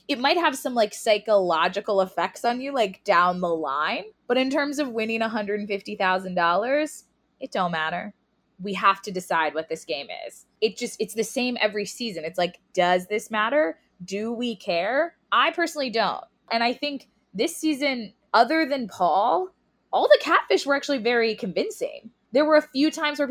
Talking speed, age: 180 wpm, 20-39